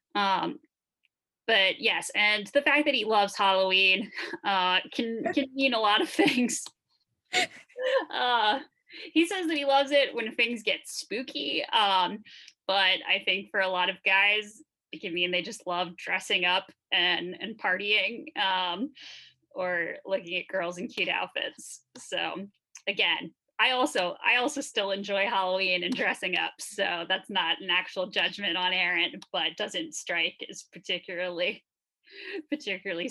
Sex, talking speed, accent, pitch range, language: female, 150 wpm, American, 185-280 Hz, English